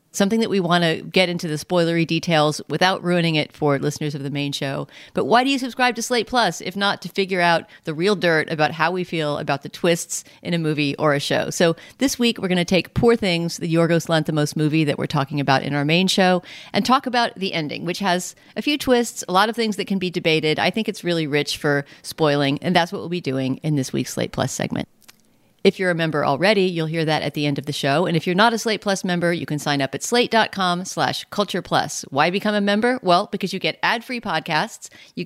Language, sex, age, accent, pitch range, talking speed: English, female, 40-59, American, 150-200 Hz, 250 wpm